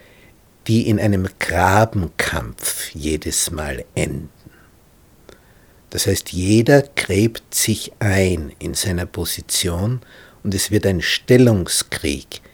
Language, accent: German, Austrian